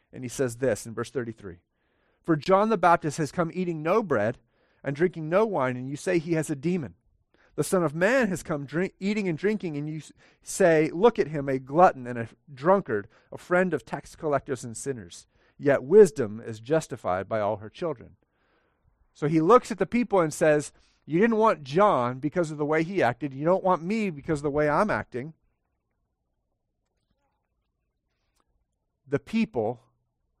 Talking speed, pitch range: 185 wpm, 120-175 Hz